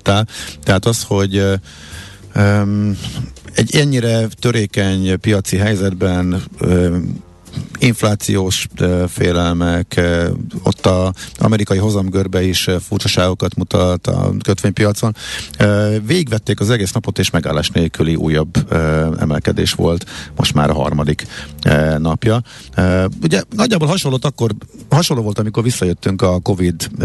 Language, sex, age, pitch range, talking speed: Hungarian, male, 50-69, 85-115 Hz, 120 wpm